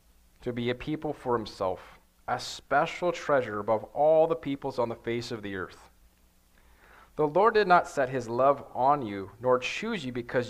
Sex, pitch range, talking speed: male, 100-145 Hz, 185 wpm